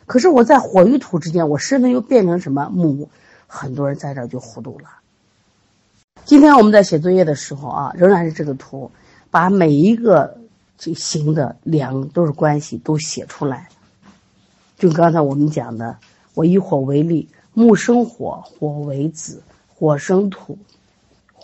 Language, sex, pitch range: Chinese, female, 145-230 Hz